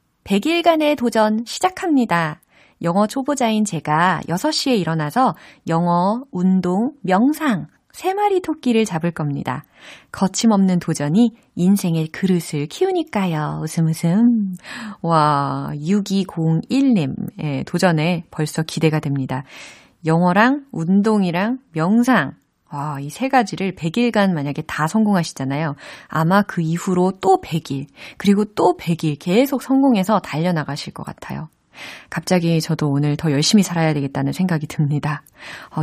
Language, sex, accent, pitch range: Korean, female, native, 160-245 Hz